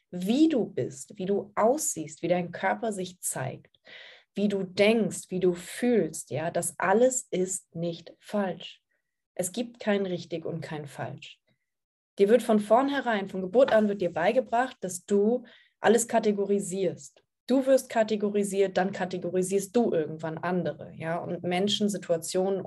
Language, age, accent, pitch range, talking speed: German, 20-39, German, 180-225 Hz, 150 wpm